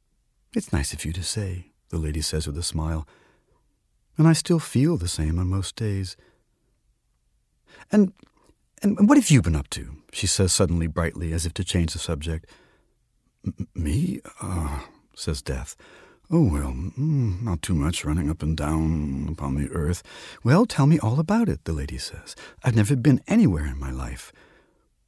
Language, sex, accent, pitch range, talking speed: English, male, American, 75-120 Hz, 175 wpm